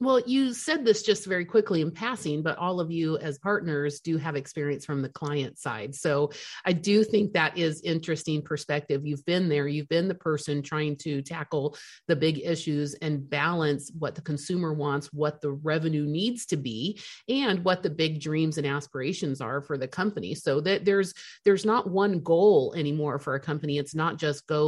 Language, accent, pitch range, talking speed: English, American, 155-215 Hz, 195 wpm